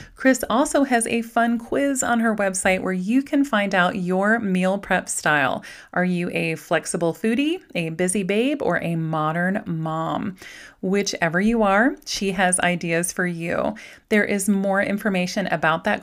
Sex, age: female, 30-49